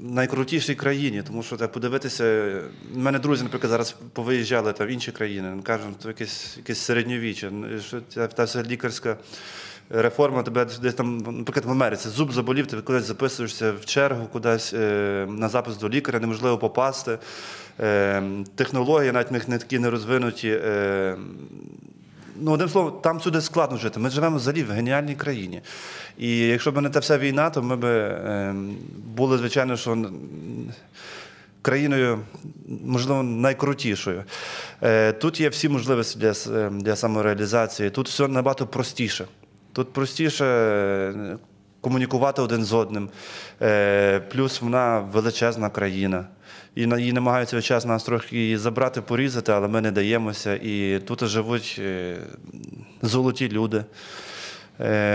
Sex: male